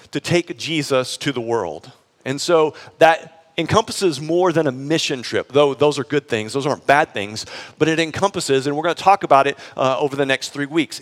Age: 40-59